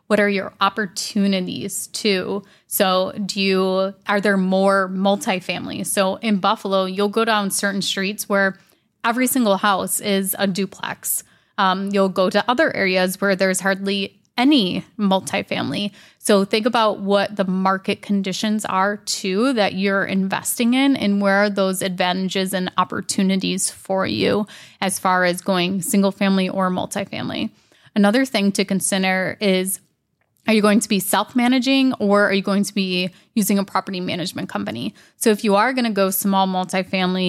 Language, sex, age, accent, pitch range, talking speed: English, female, 20-39, American, 190-210 Hz, 160 wpm